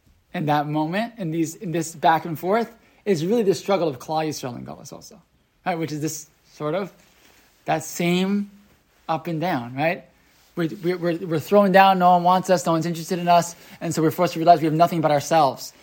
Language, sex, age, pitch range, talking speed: English, male, 20-39, 155-190 Hz, 210 wpm